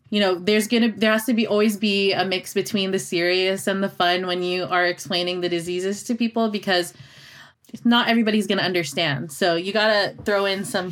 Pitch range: 190-235 Hz